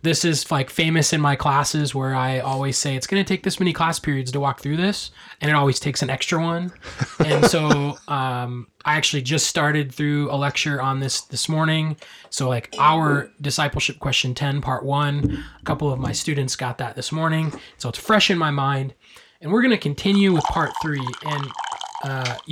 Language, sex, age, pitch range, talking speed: English, male, 20-39, 135-170 Hz, 205 wpm